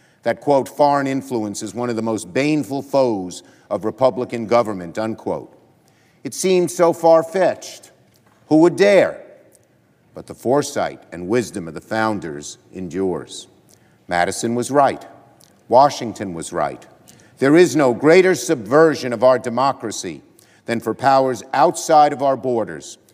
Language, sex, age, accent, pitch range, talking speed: English, male, 50-69, American, 115-160 Hz, 135 wpm